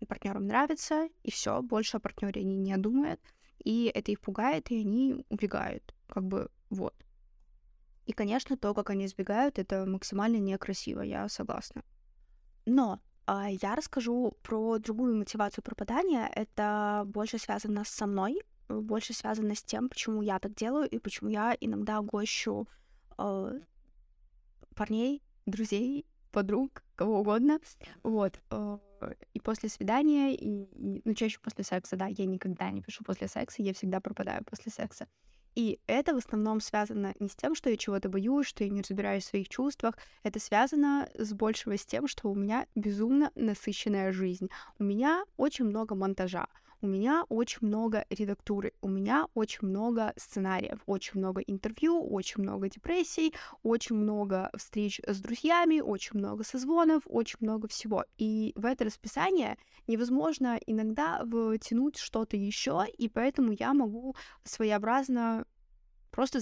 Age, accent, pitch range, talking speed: 20-39, native, 200-250 Hz, 145 wpm